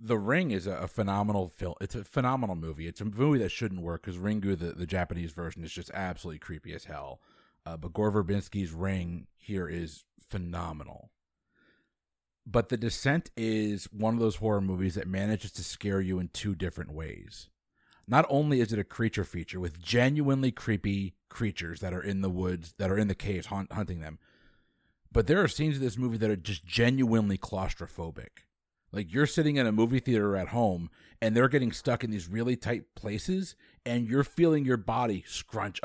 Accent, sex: American, male